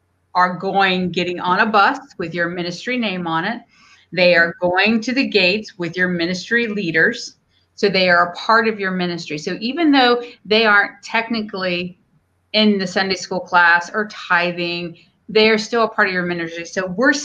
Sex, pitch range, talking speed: female, 175-225 Hz, 185 wpm